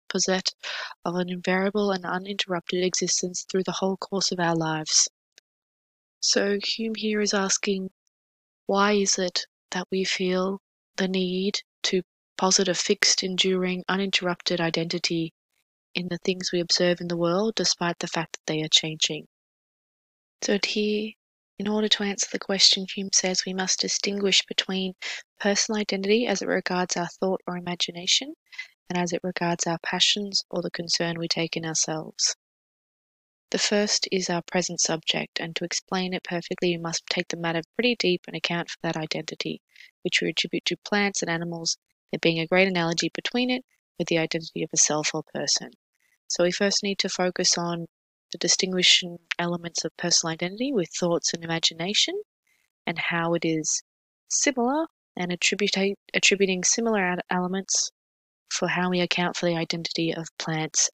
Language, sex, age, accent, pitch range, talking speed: English, female, 20-39, Australian, 170-195 Hz, 160 wpm